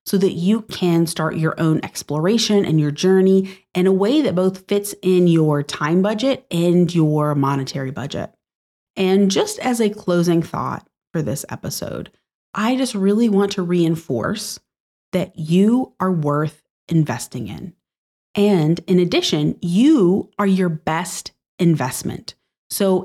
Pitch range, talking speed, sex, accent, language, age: 155-200 Hz, 145 wpm, female, American, English, 30-49